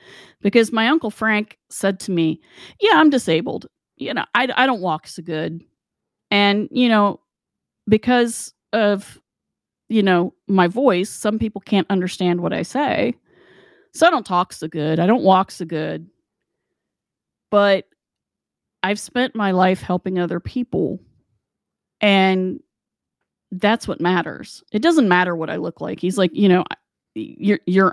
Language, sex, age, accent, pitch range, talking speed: English, female, 30-49, American, 170-215 Hz, 150 wpm